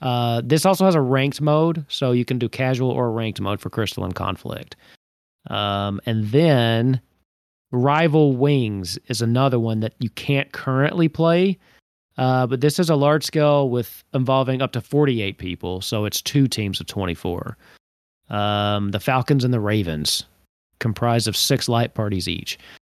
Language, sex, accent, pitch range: English, male, American, 115-145 Hz